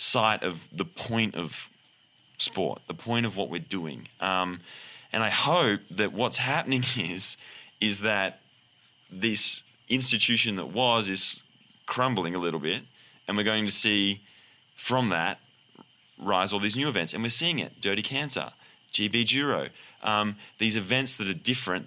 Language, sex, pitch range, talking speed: English, male, 90-115 Hz, 155 wpm